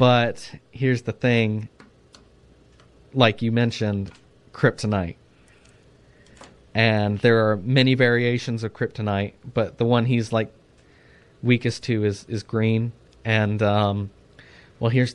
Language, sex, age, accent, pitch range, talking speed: English, male, 30-49, American, 105-125 Hz, 115 wpm